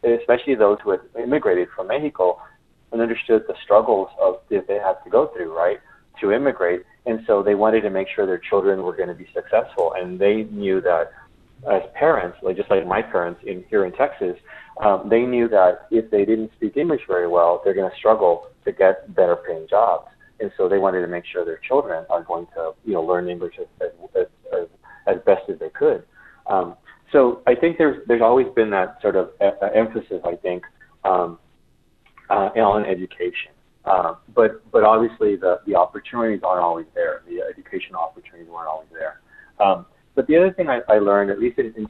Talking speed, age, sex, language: 200 wpm, 30-49, male, English